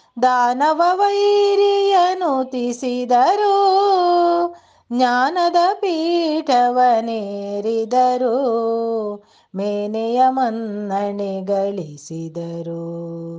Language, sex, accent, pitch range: Kannada, female, native, 200-305 Hz